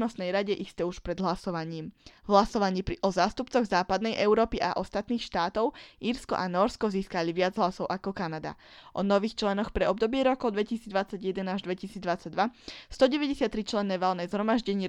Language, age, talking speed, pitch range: Slovak, 20-39, 135 wpm, 185-225 Hz